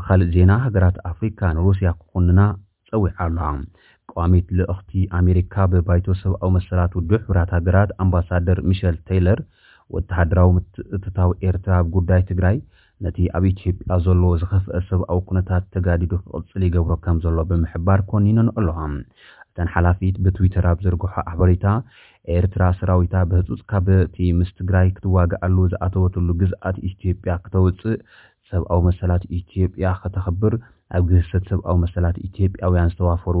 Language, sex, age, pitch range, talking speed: Amharic, male, 30-49, 90-95 Hz, 115 wpm